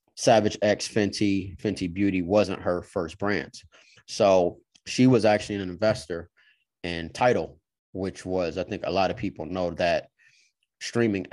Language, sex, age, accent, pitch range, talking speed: English, male, 30-49, American, 90-105 Hz, 150 wpm